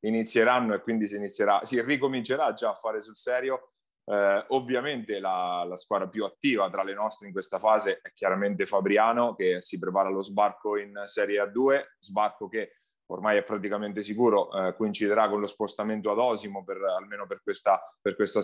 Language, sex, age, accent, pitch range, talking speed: Italian, male, 30-49, native, 100-120 Hz, 180 wpm